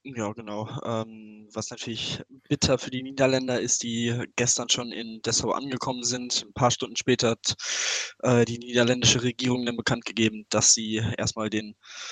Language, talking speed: German, 165 wpm